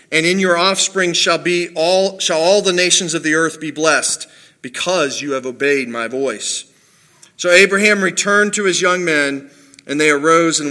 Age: 40-59